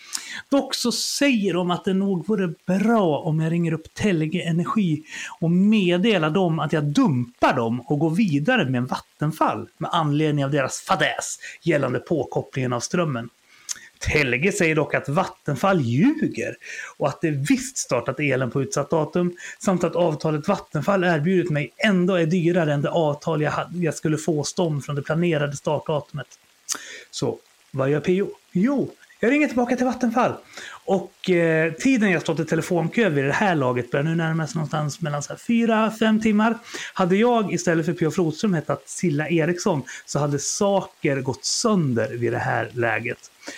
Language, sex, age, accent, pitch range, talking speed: Swedish, male, 30-49, native, 145-195 Hz, 165 wpm